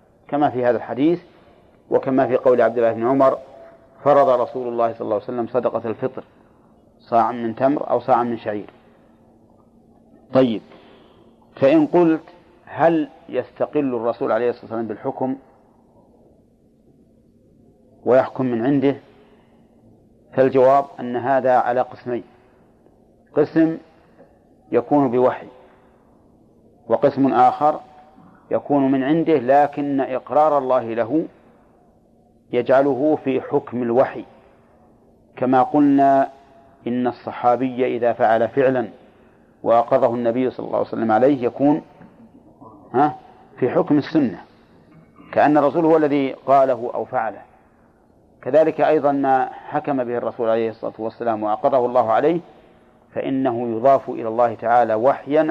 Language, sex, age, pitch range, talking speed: Arabic, male, 40-59, 120-145 Hz, 110 wpm